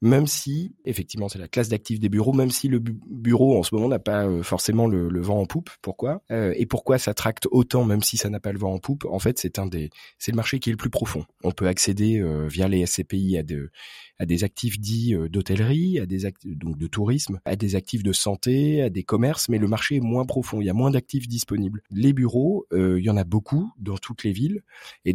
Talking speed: 255 wpm